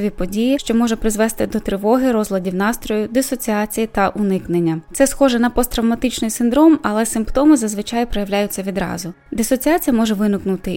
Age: 20-39